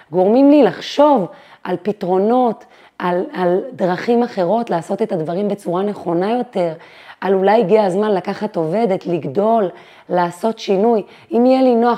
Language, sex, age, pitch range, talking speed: Hebrew, female, 30-49, 180-235 Hz, 140 wpm